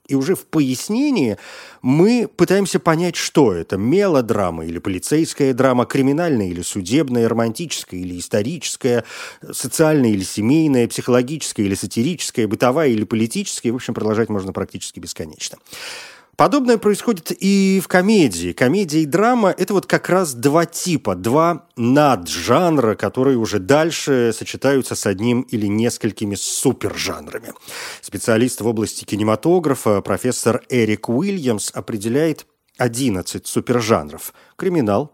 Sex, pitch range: male, 110-160 Hz